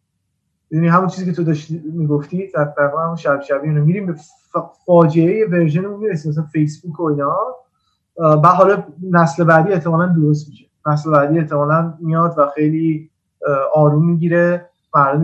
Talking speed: 145 wpm